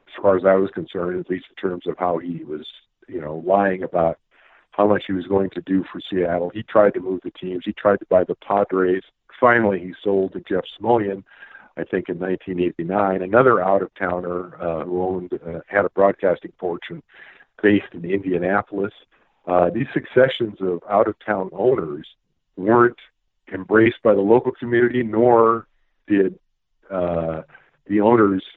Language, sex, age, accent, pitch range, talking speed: English, male, 50-69, American, 95-110 Hz, 165 wpm